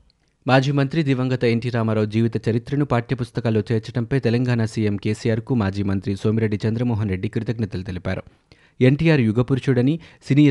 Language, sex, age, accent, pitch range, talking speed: Telugu, male, 30-49, native, 105-130 Hz, 125 wpm